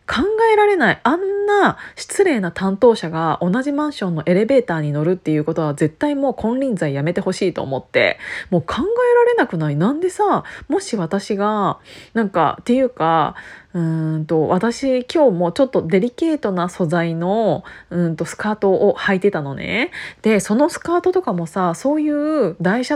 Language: Japanese